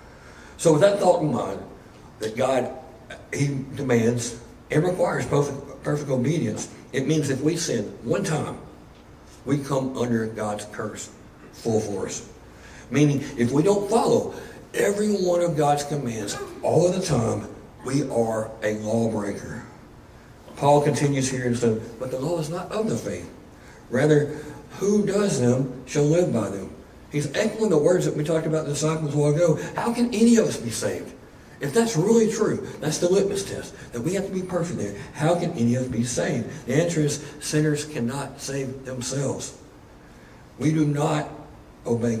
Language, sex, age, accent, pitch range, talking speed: English, male, 60-79, American, 120-155 Hz, 175 wpm